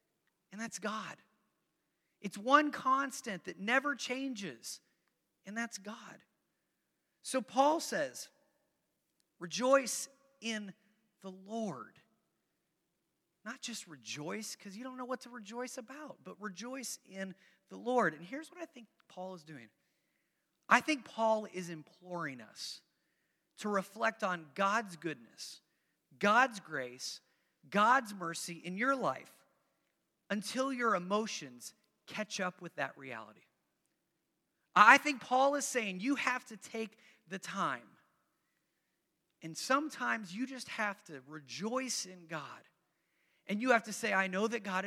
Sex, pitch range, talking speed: male, 180-250 Hz, 130 wpm